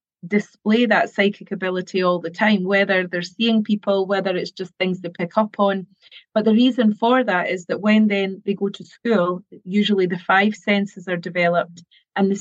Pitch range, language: 180-215 Hz, English